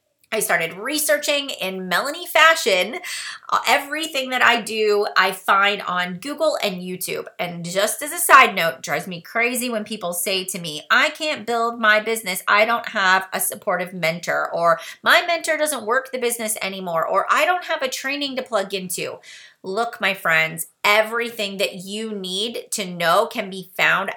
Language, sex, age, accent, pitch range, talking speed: English, female, 30-49, American, 185-255 Hz, 175 wpm